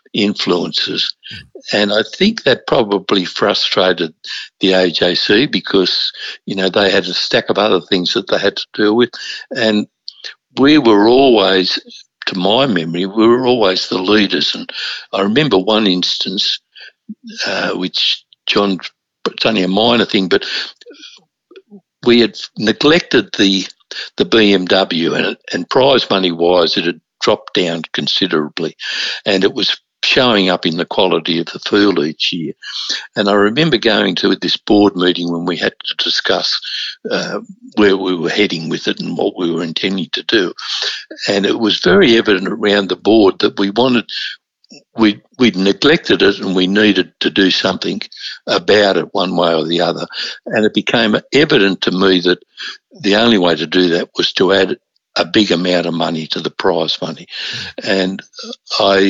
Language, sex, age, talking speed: English, male, 60-79, 165 wpm